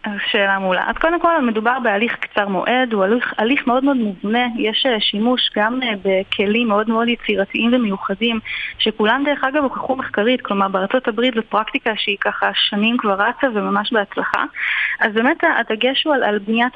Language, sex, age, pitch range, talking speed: Hebrew, female, 20-39, 210-255 Hz, 170 wpm